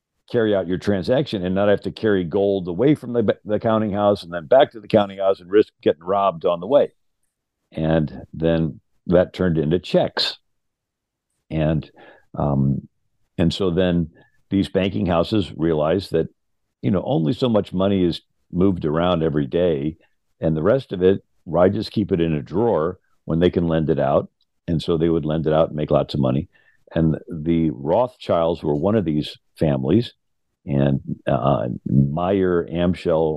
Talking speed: 180 wpm